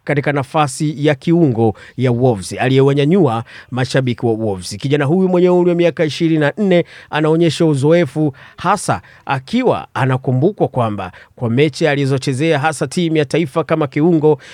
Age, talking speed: 30-49, 135 wpm